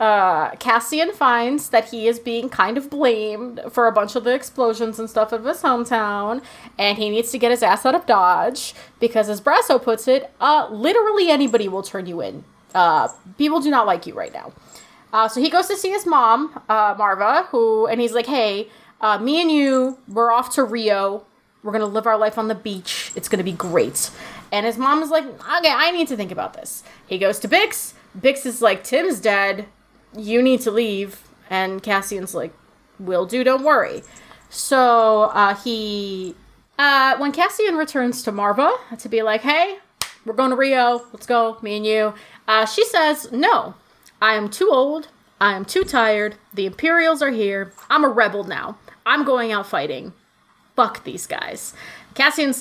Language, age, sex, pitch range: English, 20-39, female, 210-265 Hz